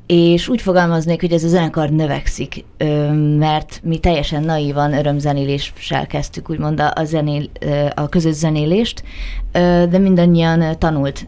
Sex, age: female, 20-39